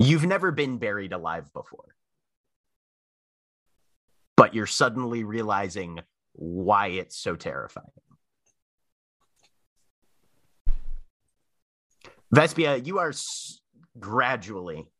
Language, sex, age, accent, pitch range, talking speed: English, male, 30-49, American, 95-125 Hz, 70 wpm